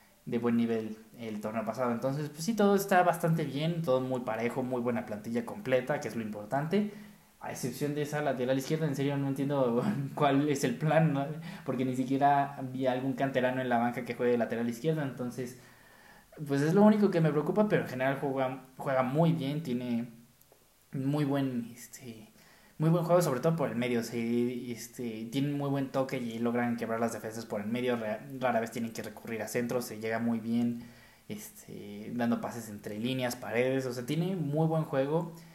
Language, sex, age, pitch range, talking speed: Spanish, male, 20-39, 115-145 Hz, 200 wpm